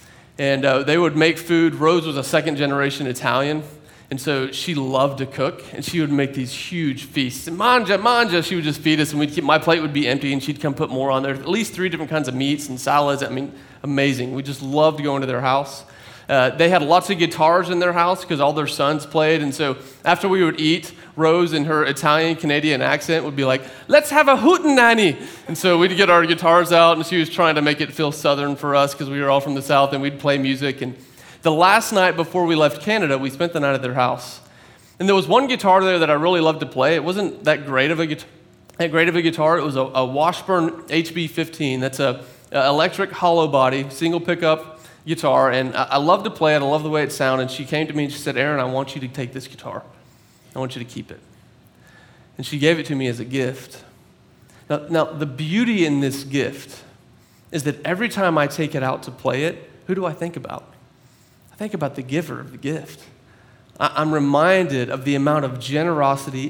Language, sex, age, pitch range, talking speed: English, male, 30-49, 135-165 Hz, 235 wpm